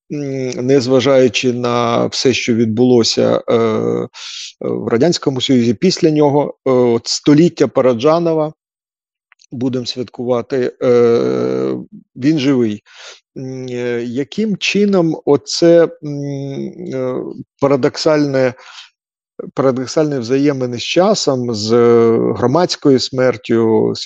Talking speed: 85 wpm